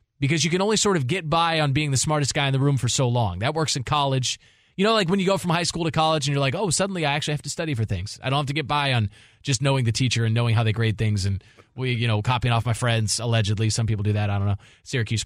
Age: 20-39